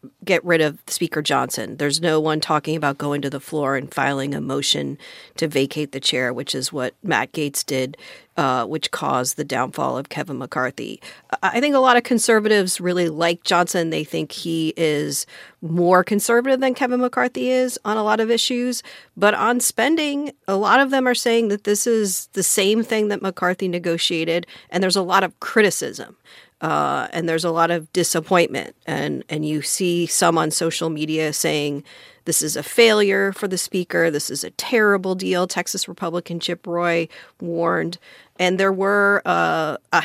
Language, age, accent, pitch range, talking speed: English, 40-59, American, 160-205 Hz, 185 wpm